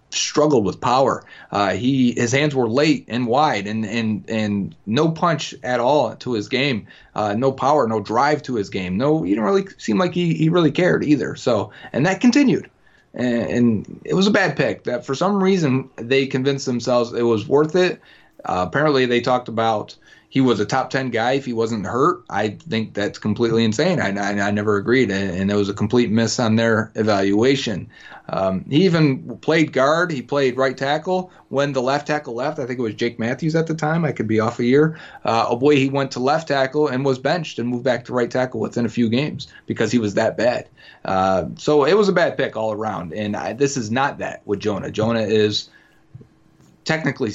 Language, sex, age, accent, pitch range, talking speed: English, male, 30-49, American, 110-140 Hz, 220 wpm